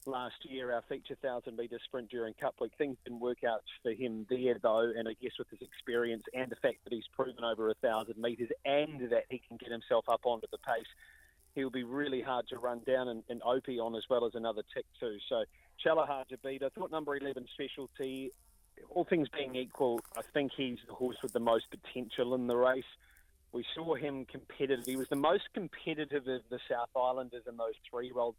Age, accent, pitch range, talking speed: 30-49, Australian, 120-135 Hz, 215 wpm